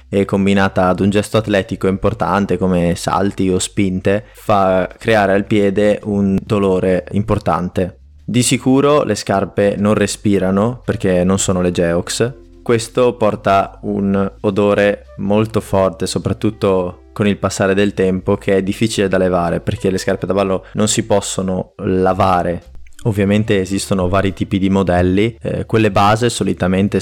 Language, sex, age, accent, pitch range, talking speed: Italian, male, 20-39, native, 95-105 Hz, 145 wpm